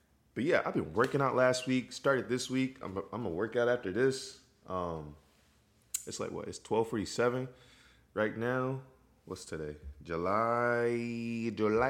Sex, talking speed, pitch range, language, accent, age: male, 120 wpm, 85-125 Hz, English, American, 20-39